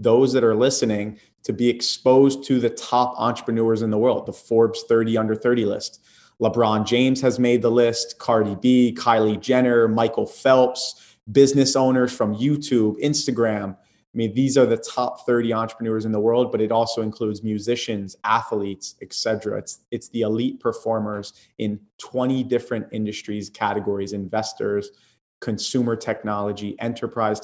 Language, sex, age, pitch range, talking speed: English, male, 30-49, 105-130 Hz, 155 wpm